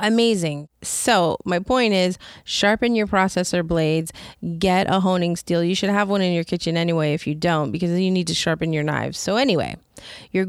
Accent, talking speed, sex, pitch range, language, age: American, 195 wpm, female, 175-250 Hz, English, 30-49